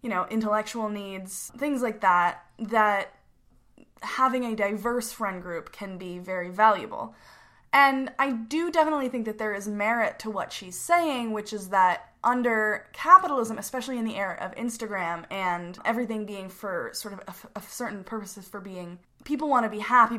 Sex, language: female, English